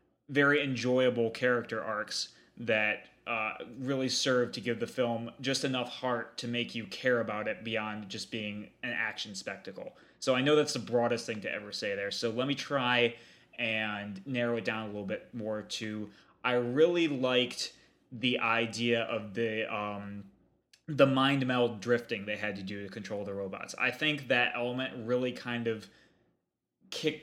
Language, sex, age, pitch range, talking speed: English, male, 20-39, 110-125 Hz, 175 wpm